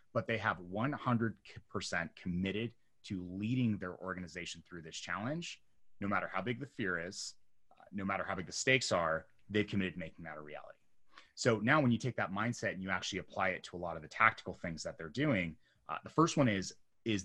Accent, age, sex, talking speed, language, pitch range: American, 30-49, male, 215 wpm, English, 90-120 Hz